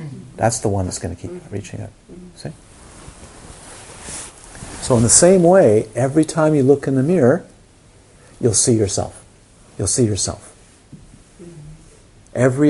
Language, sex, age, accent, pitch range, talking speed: English, male, 50-69, American, 100-135 Hz, 135 wpm